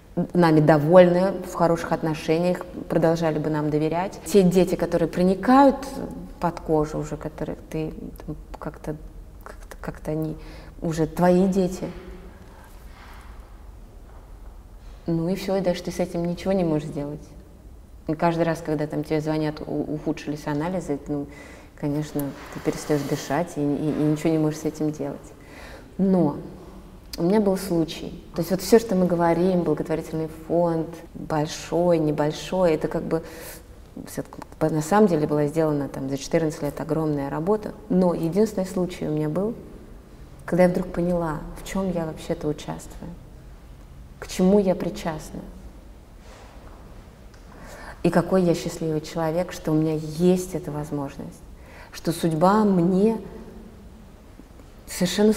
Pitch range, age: 150-180 Hz, 20-39